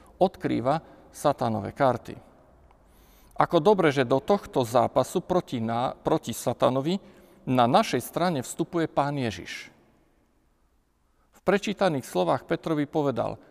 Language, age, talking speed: Slovak, 50-69, 105 wpm